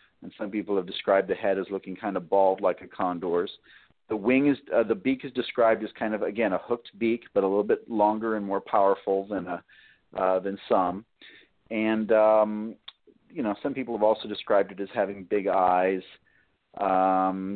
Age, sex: 40-59, male